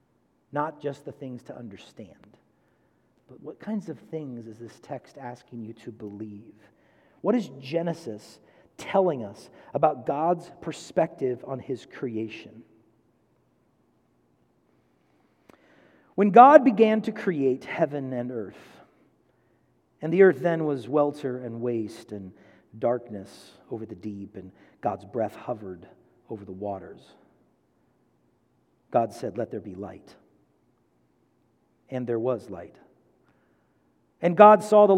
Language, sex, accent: English, male, American